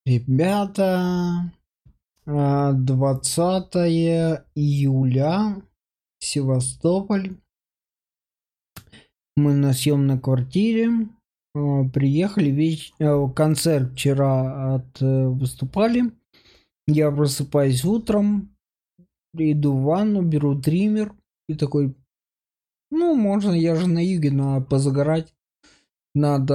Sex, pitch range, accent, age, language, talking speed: male, 140-175 Hz, native, 20-39, Russian, 75 wpm